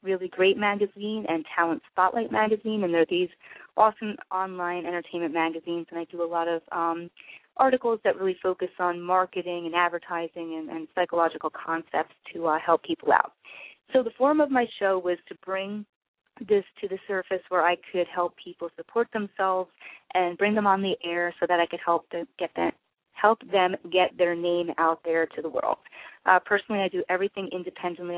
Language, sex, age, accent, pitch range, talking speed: English, female, 30-49, American, 170-205 Hz, 185 wpm